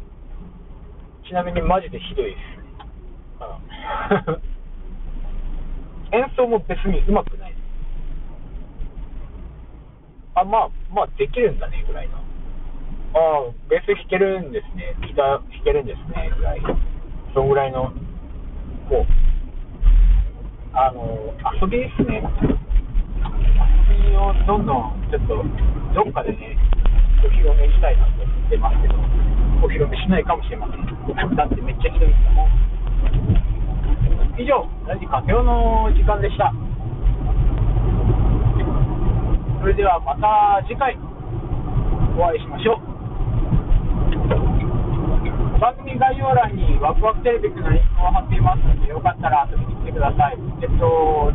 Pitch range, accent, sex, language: 110-180 Hz, native, male, Japanese